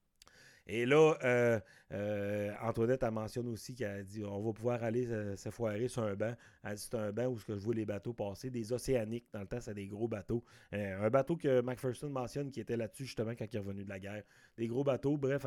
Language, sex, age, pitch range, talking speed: French, male, 30-49, 110-145 Hz, 245 wpm